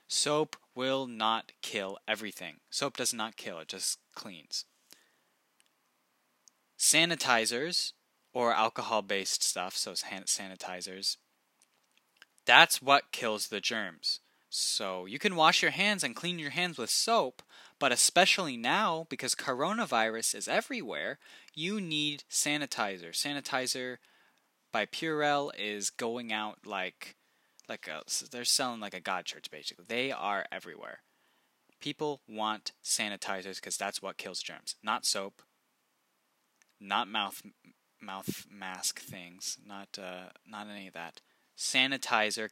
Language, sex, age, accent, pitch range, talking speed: English, male, 10-29, American, 110-155 Hz, 120 wpm